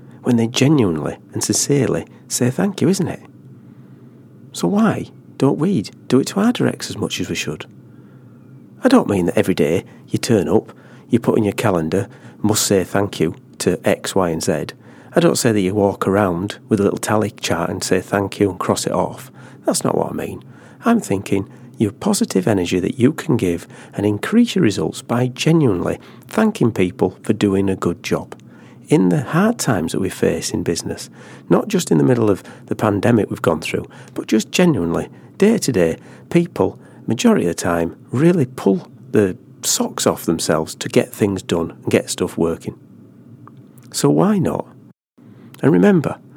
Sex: male